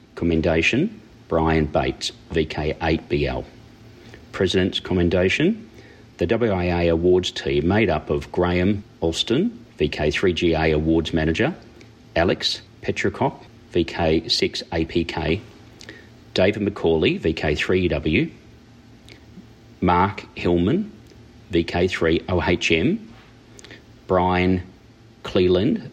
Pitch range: 85-115 Hz